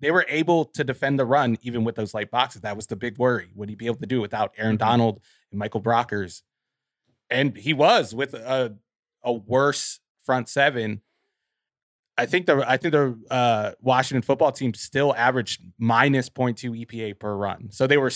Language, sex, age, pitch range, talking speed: English, male, 20-39, 110-130 Hz, 190 wpm